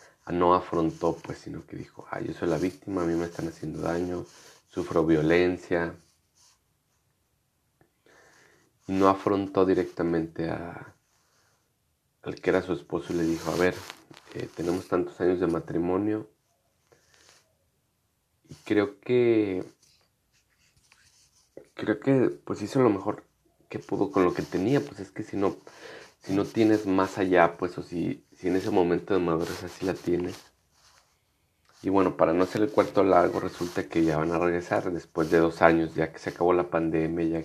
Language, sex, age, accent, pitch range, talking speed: Spanish, male, 30-49, Mexican, 85-95 Hz, 160 wpm